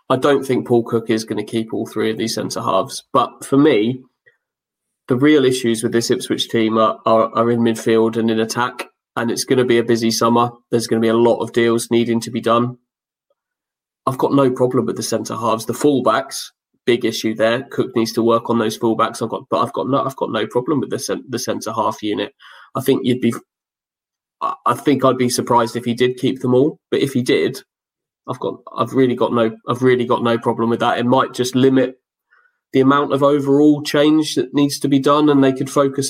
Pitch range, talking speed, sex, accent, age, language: 115-130 Hz, 230 wpm, male, British, 20-39, English